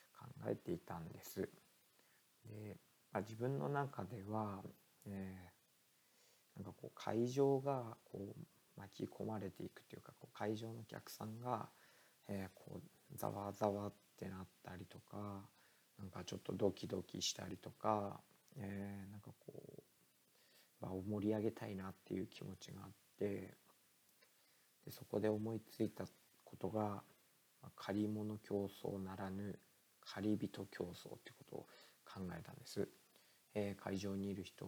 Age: 40-59